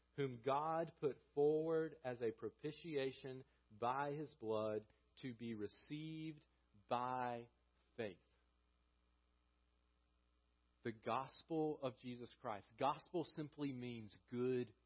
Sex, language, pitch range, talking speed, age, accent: male, French, 120-165 Hz, 95 wpm, 40-59, American